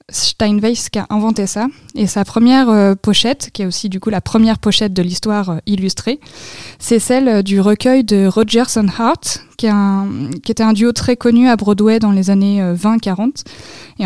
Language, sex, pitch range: French, female, 195-225 Hz